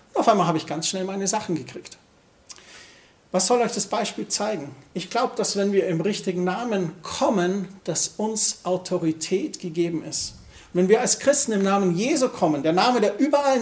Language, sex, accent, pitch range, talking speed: German, male, German, 175-215 Hz, 180 wpm